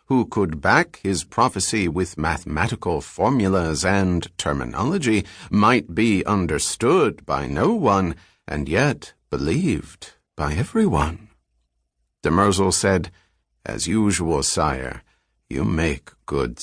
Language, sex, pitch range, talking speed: English, male, 75-105 Hz, 105 wpm